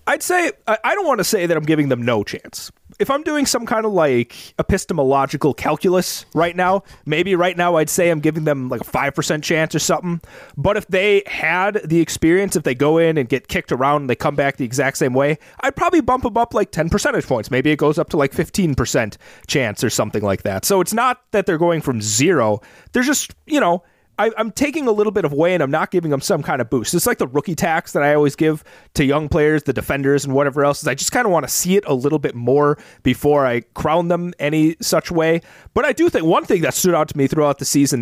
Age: 30-49